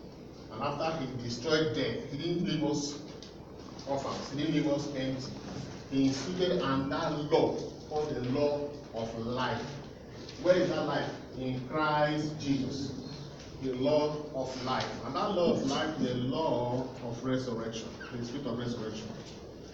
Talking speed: 140 wpm